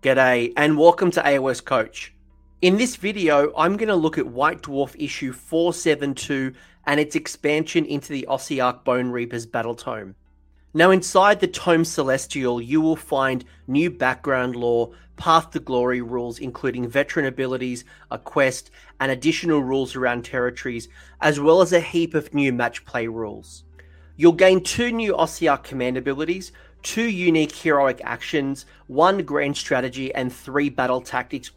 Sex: male